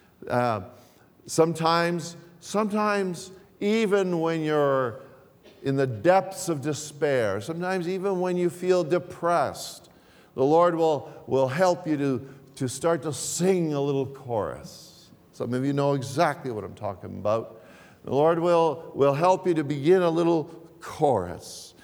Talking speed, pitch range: 140 wpm, 130-165 Hz